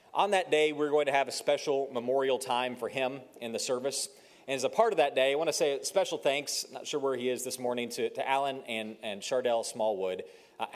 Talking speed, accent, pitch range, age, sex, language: 245 wpm, American, 125-180 Hz, 30-49, male, English